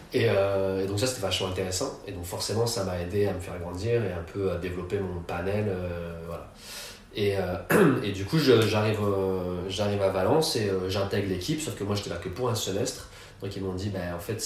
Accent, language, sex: French, French, male